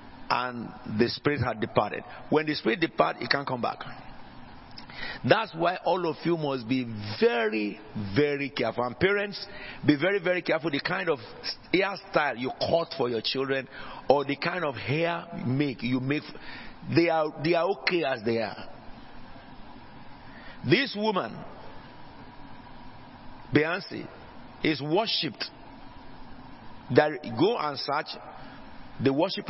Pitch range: 125-165 Hz